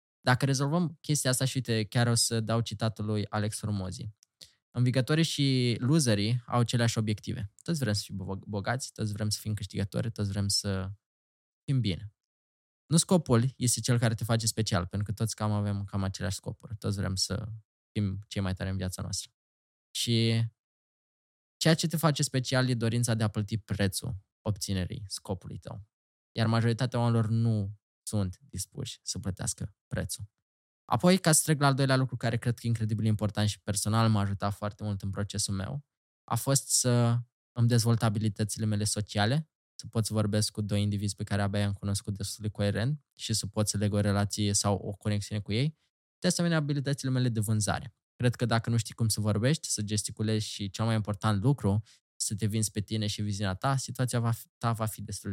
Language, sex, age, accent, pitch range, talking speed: Romanian, male, 20-39, native, 100-120 Hz, 190 wpm